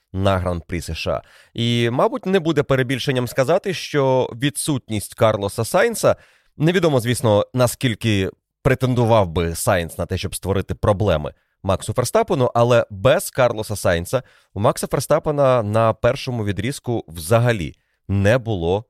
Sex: male